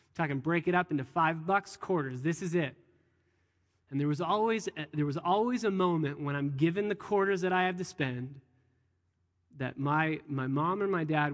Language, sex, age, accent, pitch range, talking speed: English, male, 20-39, American, 145-200 Hz, 205 wpm